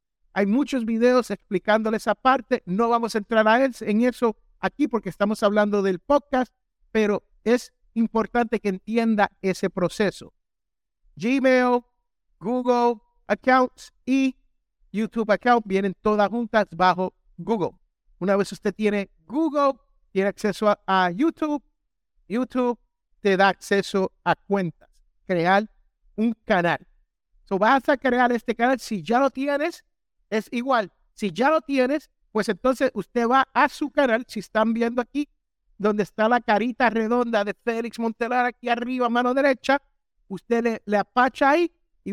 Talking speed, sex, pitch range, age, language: 140 wpm, male, 210-260 Hz, 60-79, Spanish